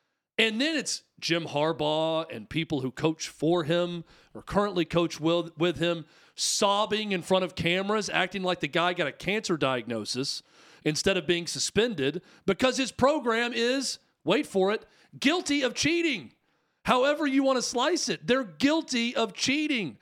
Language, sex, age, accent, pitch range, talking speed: English, male, 40-59, American, 155-215 Hz, 160 wpm